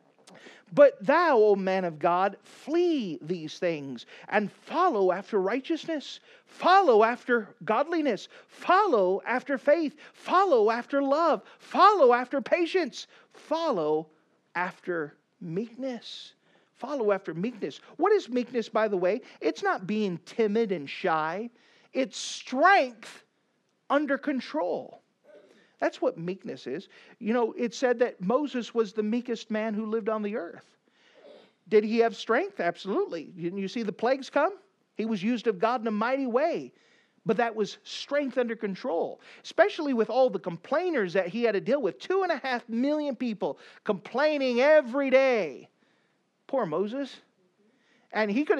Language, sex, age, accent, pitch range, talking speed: English, male, 40-59, American, 200-280 Hz, 145 wpm